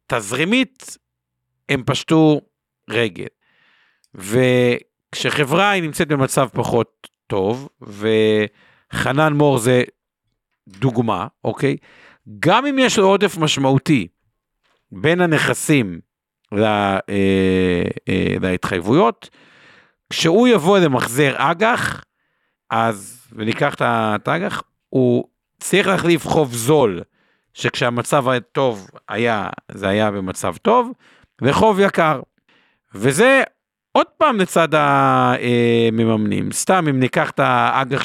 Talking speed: 90 wpm